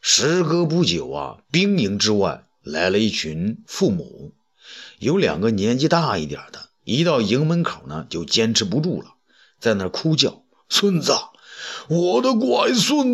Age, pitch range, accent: 50-69, 135-220 Hz, native